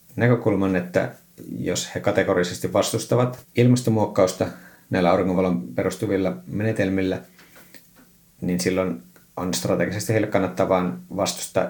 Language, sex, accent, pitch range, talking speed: Finnish, male, native, 95-115 Hz, 90 wpm